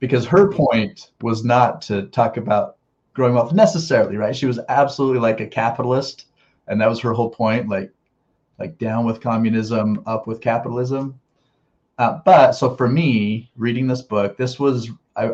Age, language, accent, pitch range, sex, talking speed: 30-49, English, American, 110-135 Hz, male, 170 wpm